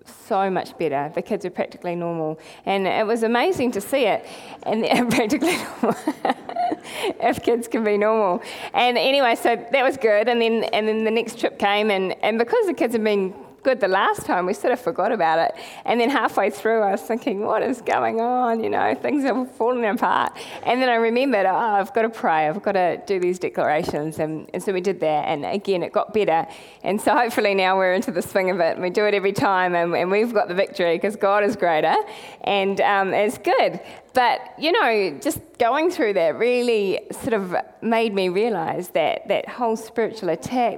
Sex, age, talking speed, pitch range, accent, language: female, 20-39, 215 wpm, 185-235 Hz, Australian, English